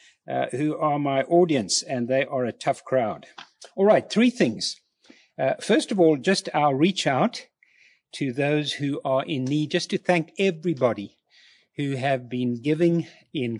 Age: 50-69